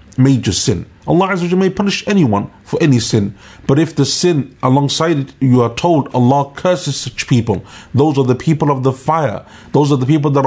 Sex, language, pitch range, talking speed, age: male, English, 120-150 Hz, 195 wpm, 30-49